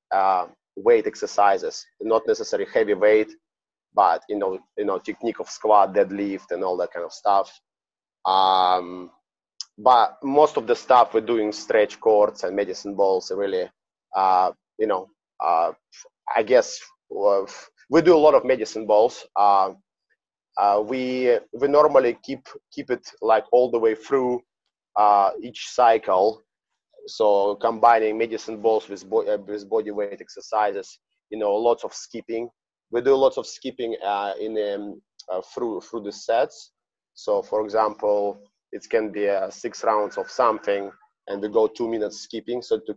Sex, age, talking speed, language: male, 30-49, 155 wpm, English